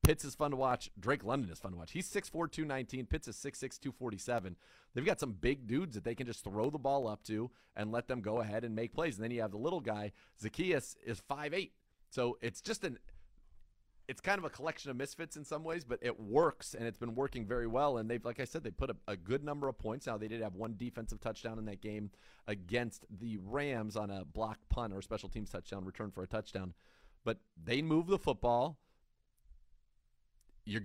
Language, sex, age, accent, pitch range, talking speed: English, male, 30-49, American, 110-135 Hz, 230 wpm